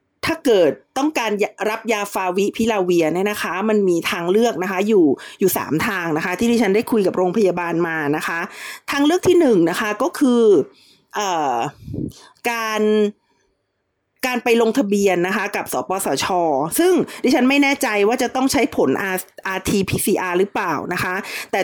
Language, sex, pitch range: Thai, female, 185-250 Hz